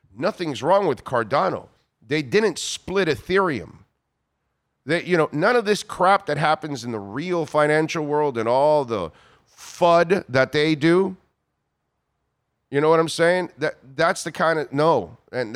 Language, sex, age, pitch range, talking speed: English, male, 40-59, 120-155 Hz, 160 wpm